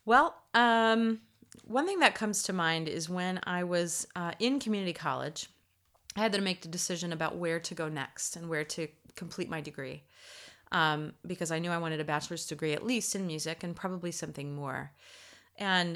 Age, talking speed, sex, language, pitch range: 30-49, 190 wpm, female, English, 155-185 Hz